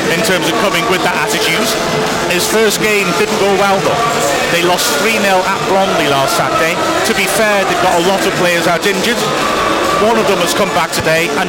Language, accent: English, British